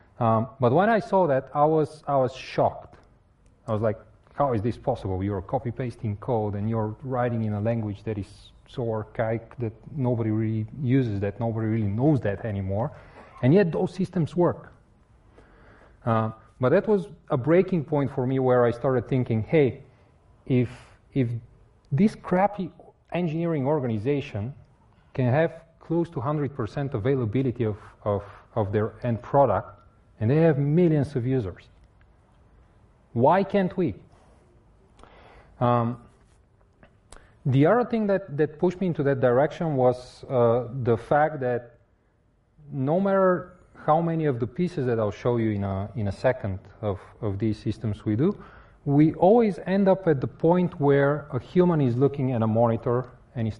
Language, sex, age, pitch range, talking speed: Spanish, male, 30-49, 110-150 Hz, 160 wpm